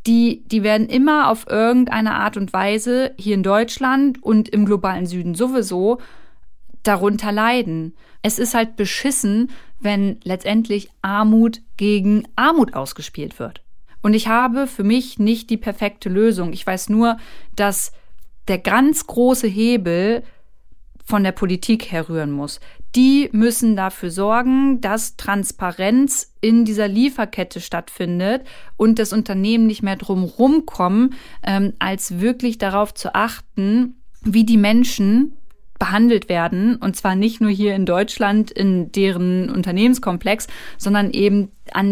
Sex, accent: female, German